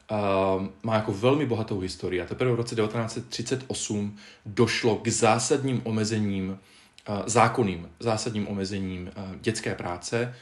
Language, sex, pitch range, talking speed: Czech, male, 100-115 Hz, 110 wpm